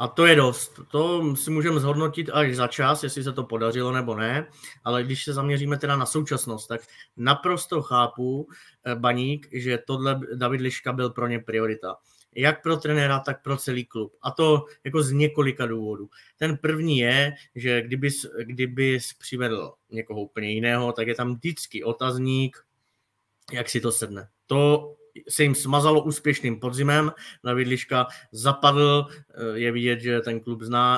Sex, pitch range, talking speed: male, 120-145 Hz, 160 wpm